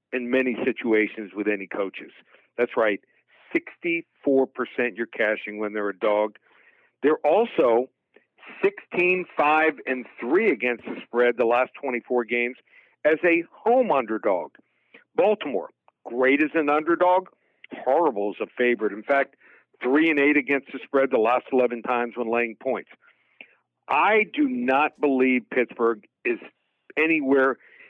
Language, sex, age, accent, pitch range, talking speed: English, male, 60-79, American, 120-150 Hz, 125 wpm